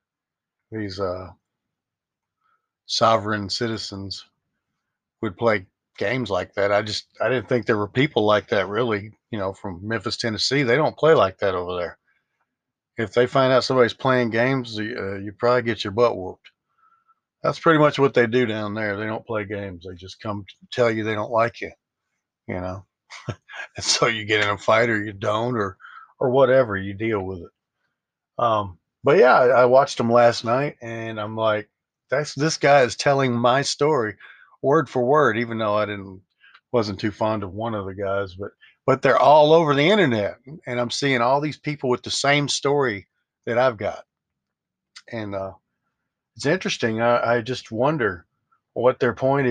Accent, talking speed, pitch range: American, 185 wpm, 105-130 Hz